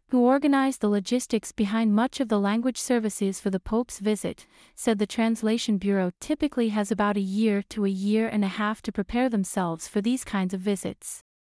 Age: 30-49